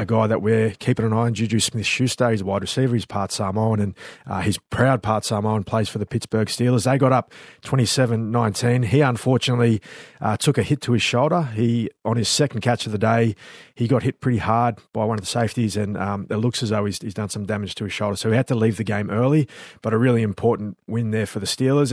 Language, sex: English, male